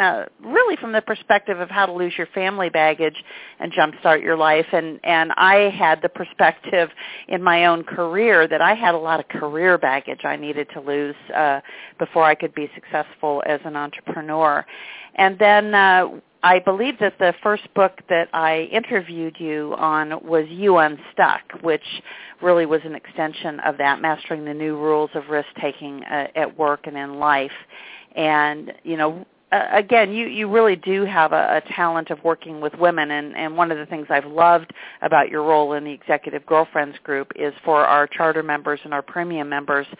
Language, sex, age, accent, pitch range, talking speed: English, female, 50-69, American, 150-180 Hz, 185 wpm